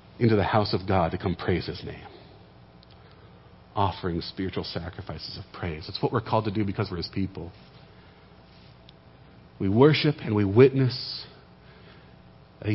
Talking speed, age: 145 wpm, 40-59